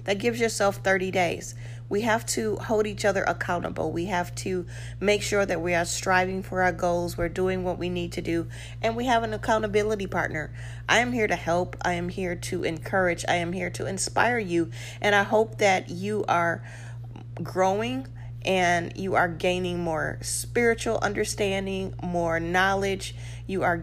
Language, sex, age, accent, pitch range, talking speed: English, female, 40-59, American, 120-190 Hz, 180 wpm